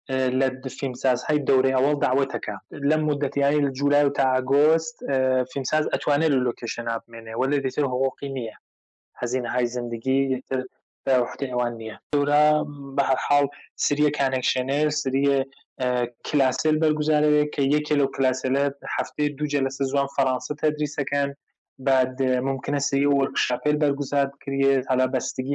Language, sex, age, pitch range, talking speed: English, male, 20-39, 130-145 Hz, 120 wpm